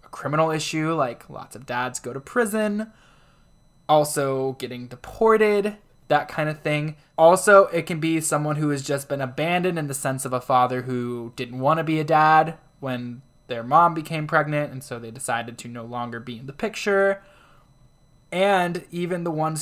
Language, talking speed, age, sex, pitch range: English, 180 wpm, 20-39, male, 135-170 Hz